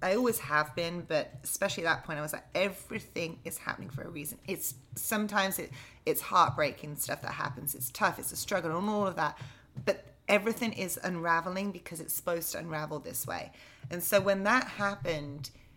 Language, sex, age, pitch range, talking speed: English, female, 30-49, 155-195 Hz, 190 wpm